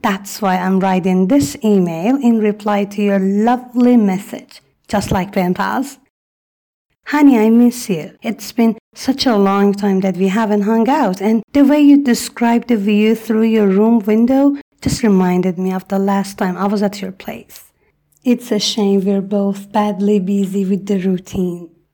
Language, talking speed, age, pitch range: Persian, 170 wpm, 30-49, 195-245 Hz